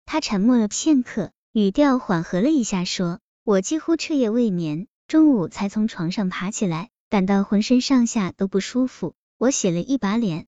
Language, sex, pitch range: Chinese, male, 185-240 Hz